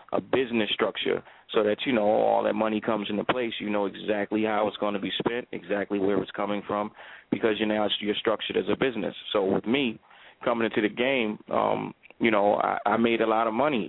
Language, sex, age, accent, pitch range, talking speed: English, male, 30-49, American, 100-110 Hz, 225 wpm